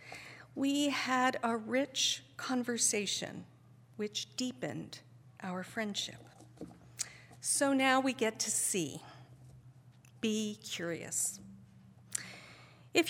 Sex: female